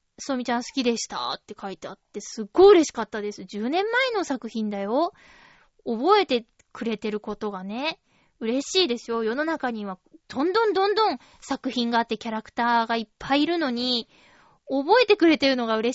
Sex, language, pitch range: female, Japanese, 230-330 Hz